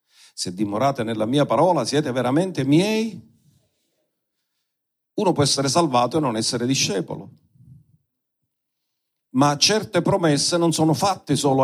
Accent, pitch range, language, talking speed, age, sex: native, 130-170 Hz, Italian, 120 wpm, 50-69, male